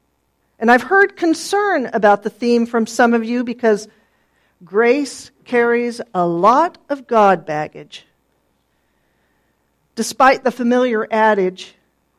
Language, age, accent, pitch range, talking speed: English, 50-69, American, 185-255 Hz, 115 wpm